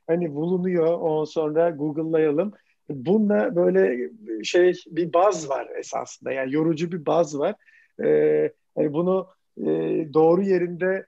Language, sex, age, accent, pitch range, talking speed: Turkish, male, 50-69, native, 150-180 Hz, 125 wpm